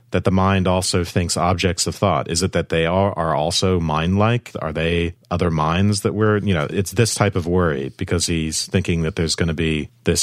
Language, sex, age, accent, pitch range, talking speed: English, male, 40-59, American, 85-105 Hz, 225 wpm